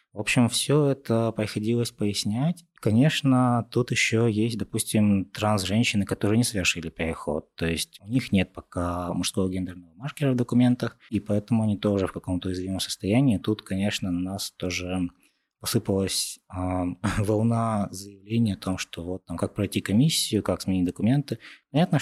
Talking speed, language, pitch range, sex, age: 150 wpm, Russian, 95-115 Hz, male, 20-39